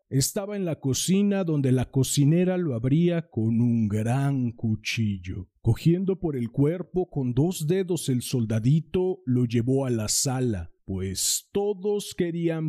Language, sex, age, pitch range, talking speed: Spanish, male, 40-59, 115-170 Hz, 140 wpm